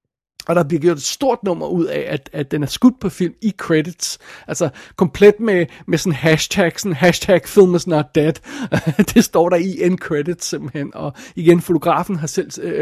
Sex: male